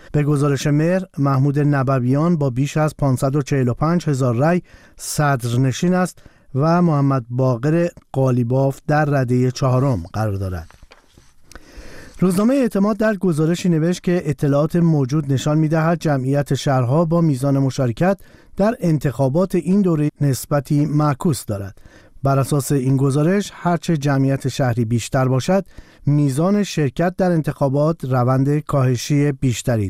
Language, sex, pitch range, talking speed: Persian, male, 130-165 Hz, 125 wpm